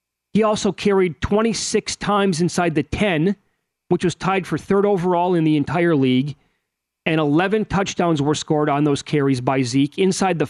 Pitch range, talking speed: 145-180 Hz, 170 wpm